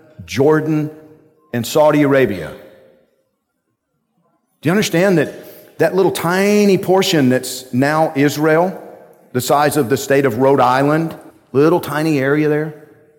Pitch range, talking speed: 130-170 Hz, 125 wpm